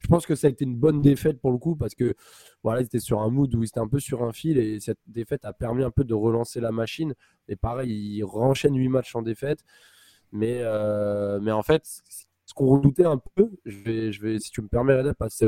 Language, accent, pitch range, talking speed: French, French, 115-155 Hz, 255 wpm